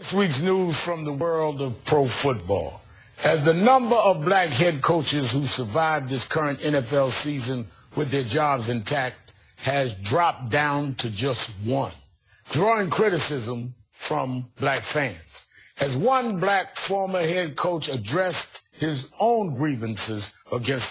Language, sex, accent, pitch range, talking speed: English, male, American, 125-160 Hz, 140 wpm